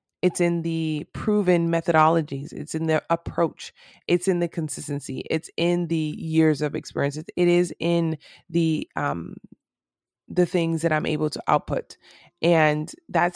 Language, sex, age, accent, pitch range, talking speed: English, female, 20-39, American, 150-175 Hz, 155 wpm